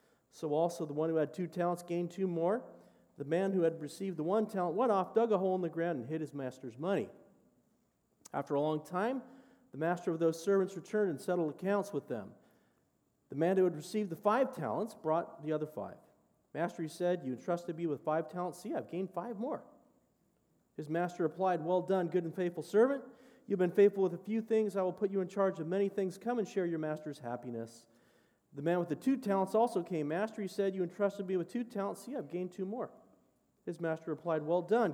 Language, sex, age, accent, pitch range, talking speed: English, male, 40-59, American, 155-210 Hz, 225 wpm